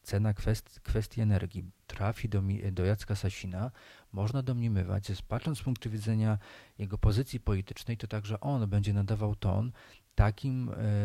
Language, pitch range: Polish, 100-115 Hz